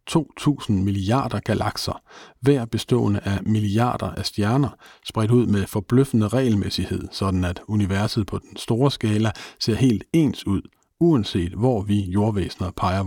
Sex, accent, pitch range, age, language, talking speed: male, native, 100-120 Hz, 50-69, Danish, 140 wpm